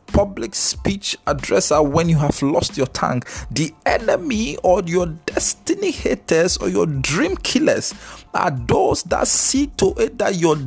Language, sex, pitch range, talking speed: English, male, 135-175 Hz, 150 wpm